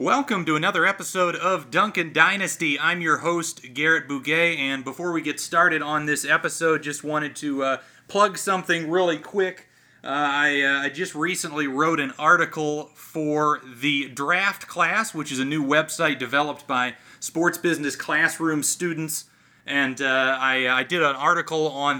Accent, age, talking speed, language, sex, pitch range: American, 30-49, 165 wpm, English, male, 140-175 Hz